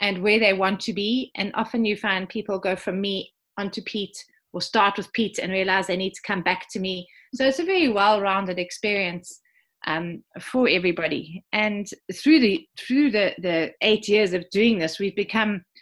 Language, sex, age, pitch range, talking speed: English, female, 30-49, 180-225 Hz, 195 wpm